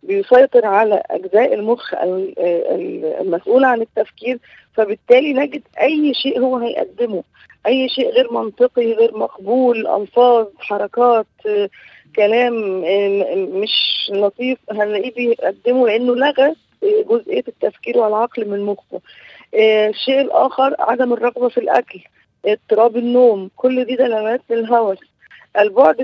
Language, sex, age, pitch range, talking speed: Arabic, female, 20-39, 215-265 Hz, 105 wpm